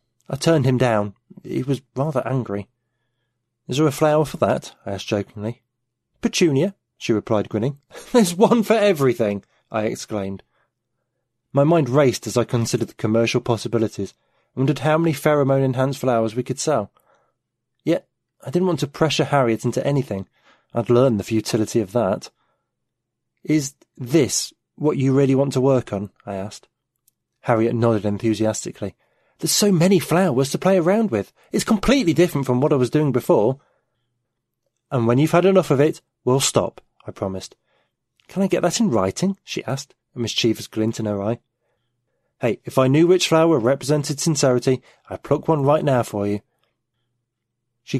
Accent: British